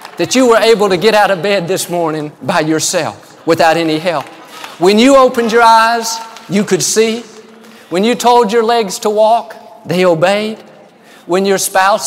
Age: 50-69